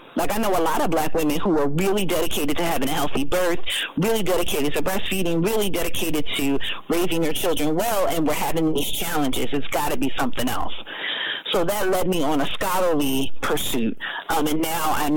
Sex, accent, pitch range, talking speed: female, American, 150-195 Hz, 200 wpm